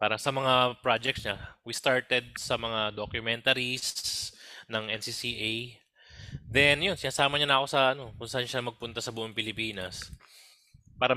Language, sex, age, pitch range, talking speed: Filipino, male, 20-39, 100-130 Hz, 150 wpm